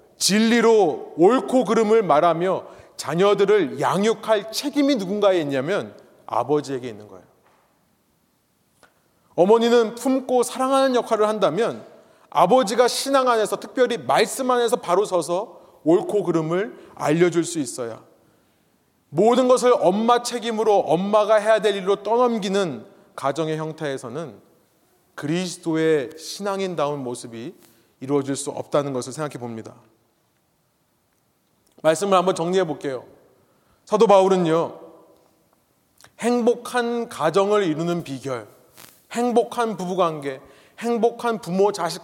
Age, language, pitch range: 30-49, Korean, 150-230 Hz